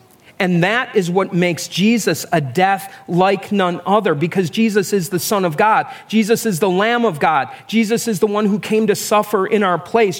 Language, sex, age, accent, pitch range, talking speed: English, male, 40-59, American, 160-210 Hz, 205 wpm